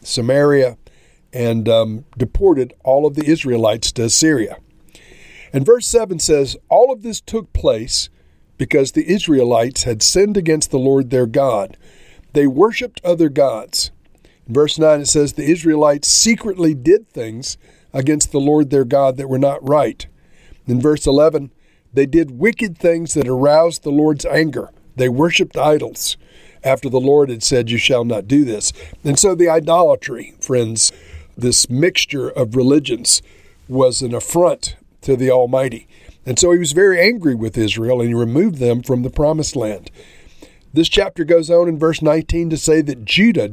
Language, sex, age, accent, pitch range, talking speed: English, male, 50-69, American, 120-155 Hz, 165 wpm